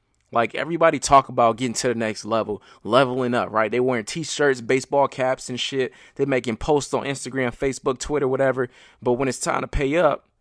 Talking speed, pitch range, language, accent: 195 wpm, 115-135 Hz, English, American